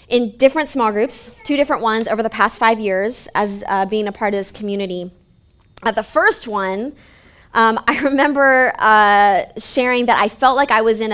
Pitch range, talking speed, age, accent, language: 200-235 Hz, 195 wpm, 20-39, American, English